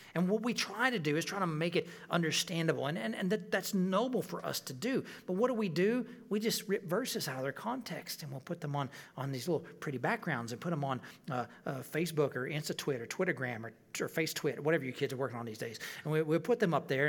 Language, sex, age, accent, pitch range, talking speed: English, male, 40-59, American, 135-170 Hz, 260 wpm